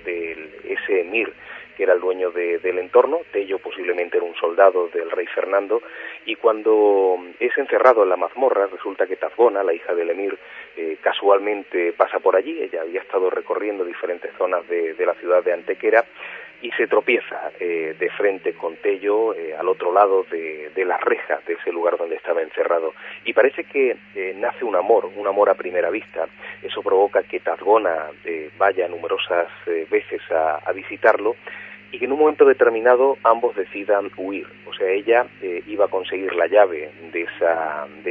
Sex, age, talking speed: male, 40-59, 180 wpm